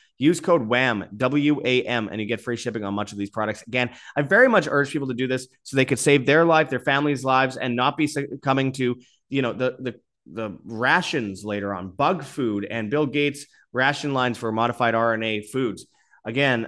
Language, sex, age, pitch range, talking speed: English, male, 30-49, 110-145 Hz, 205 wpm